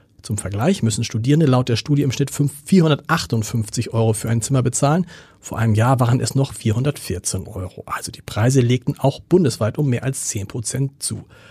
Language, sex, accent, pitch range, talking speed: German, male, German, 110-145 Hz, 185 wpm